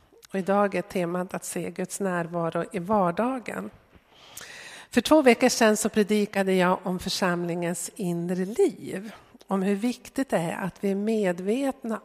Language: Swedish